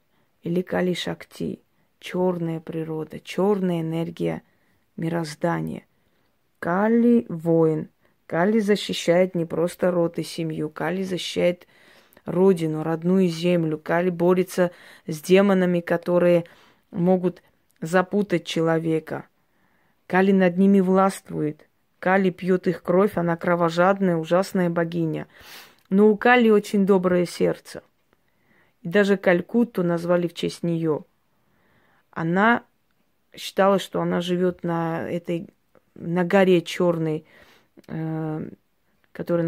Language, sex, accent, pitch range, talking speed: Russian, female, native, 165-190 Hz, 100 wpm